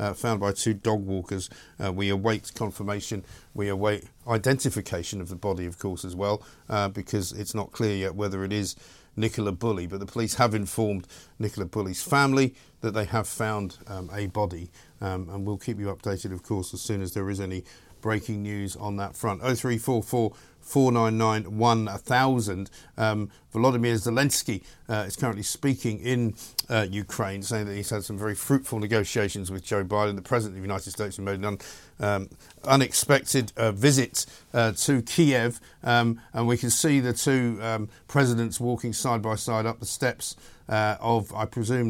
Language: English